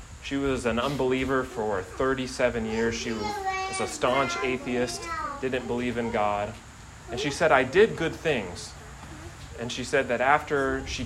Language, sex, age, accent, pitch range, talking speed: English, male, 30-49, American, 110-135 Hz, 155 wpm